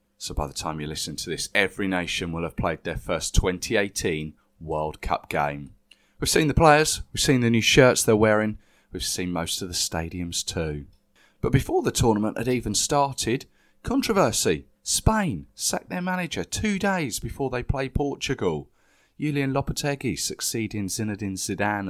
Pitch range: 90-125 Hz